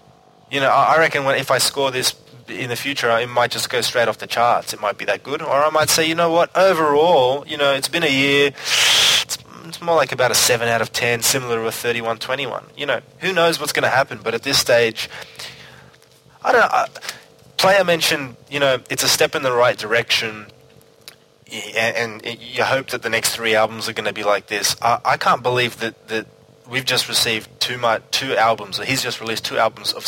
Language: English